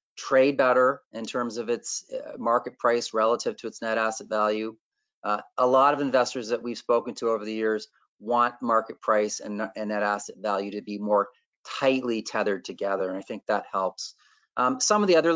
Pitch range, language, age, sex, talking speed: 110-130 Hz, English, 30-49, male, 195 wpm